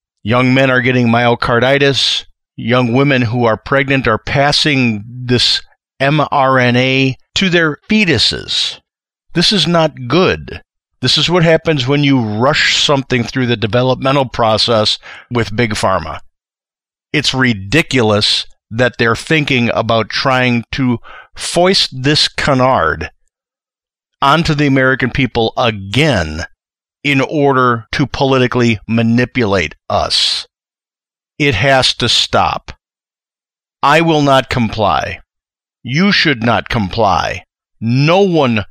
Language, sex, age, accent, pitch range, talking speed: English, male, 50-69, American, 120-150 Hz, 110 wpm